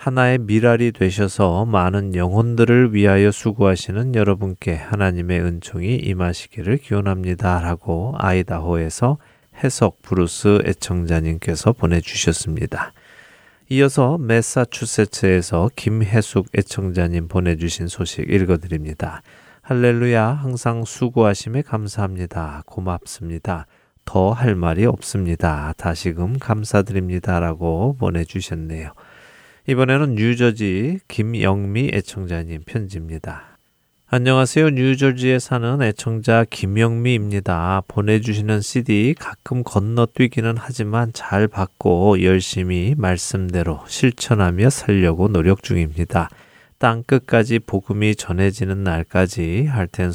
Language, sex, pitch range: Korean, male, 90-115 Hz